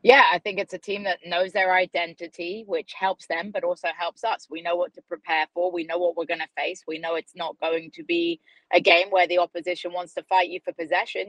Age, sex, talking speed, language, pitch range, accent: 20-39, female, 255 wpm, English, 165-185 Hz, British